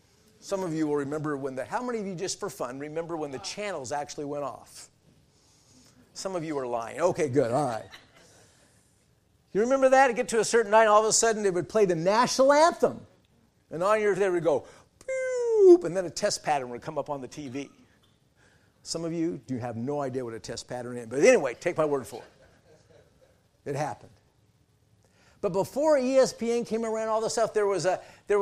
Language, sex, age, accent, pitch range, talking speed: English, male, 50-69, American, 140-215 Hz, 210 wpm